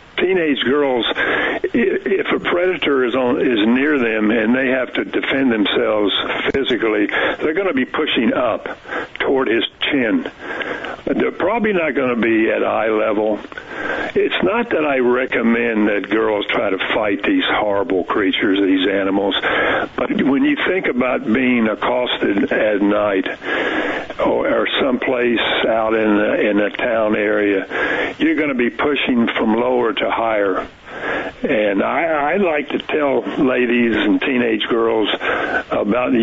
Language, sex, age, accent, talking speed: English, male, 60-79, American, 145 wpm